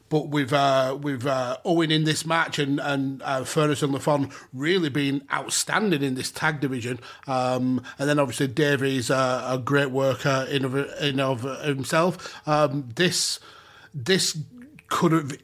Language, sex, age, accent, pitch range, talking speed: English, male, 30-49, British, 135-155 Hz, 160 wpm